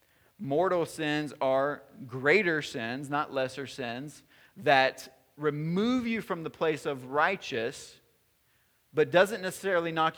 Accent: American